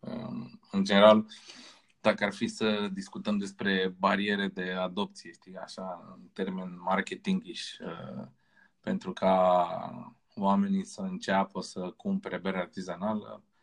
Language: Romanian